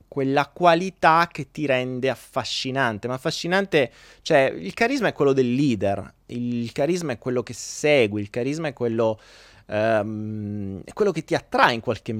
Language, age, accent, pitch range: Italian, 30-49, native, 115-165 Hz